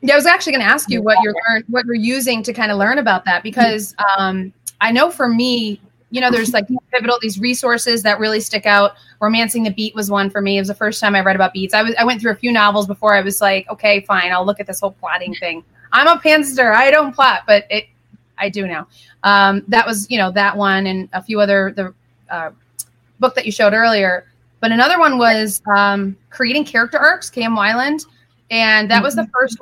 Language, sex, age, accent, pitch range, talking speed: English, female, 30-49, American, 195-250 Hz, 240 wpm